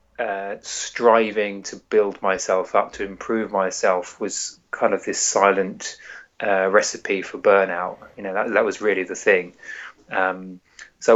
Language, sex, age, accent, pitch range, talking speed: English, male, 30-49, British, 95-115 Hz, 150 wpm